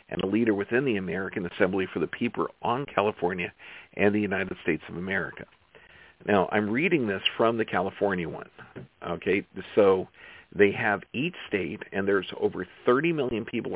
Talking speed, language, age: 165 wpm, English, 50-69